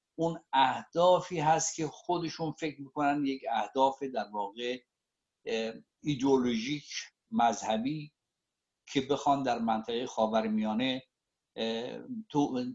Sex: male